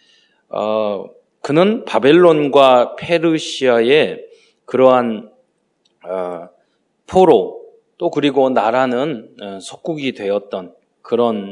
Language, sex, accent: Korean, male, native